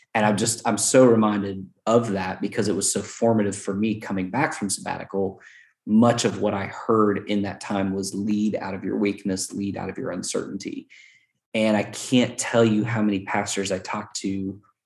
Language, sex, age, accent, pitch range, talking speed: English, male, 20-39, American, 100-115 Hz, 200 wpm